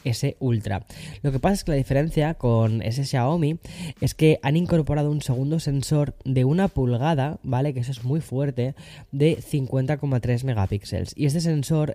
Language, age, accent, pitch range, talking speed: Spanish, 10-29, Spanish, 105-135 Hz, 170 wpm